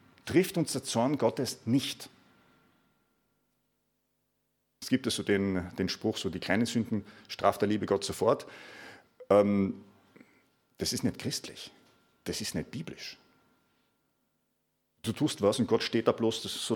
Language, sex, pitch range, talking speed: German, male, 115-150 Hz, 145 wpm